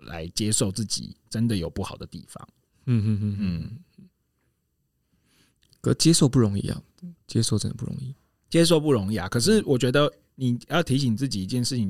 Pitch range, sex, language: 100-130 Hz, male, Chinese